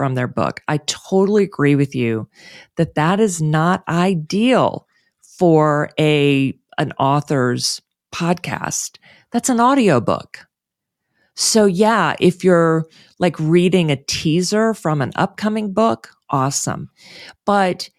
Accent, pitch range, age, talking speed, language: American, 150-215 Hz, 40-59, 115 wpm, English